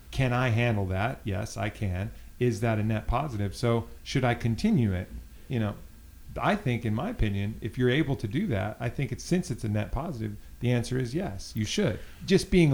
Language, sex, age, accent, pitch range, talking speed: English, male, 40-59, American, 100-130 Hz, 215 wpm